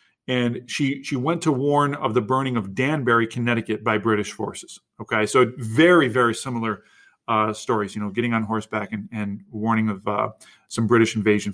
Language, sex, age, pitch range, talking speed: English, male, 40-59, 110-145 Hz, 180 wpm